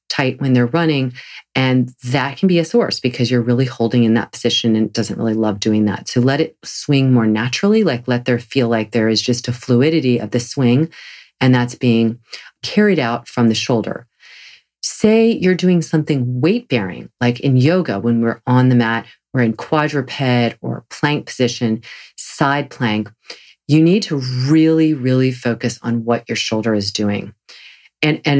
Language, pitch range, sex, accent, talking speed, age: English, 115-135 Hz, female, American, 180 wpm, 40-59